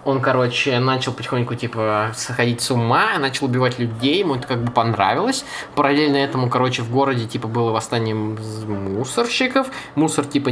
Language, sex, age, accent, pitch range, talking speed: Russian, male, 20-39, native, 115-155 Hz, 155 wpm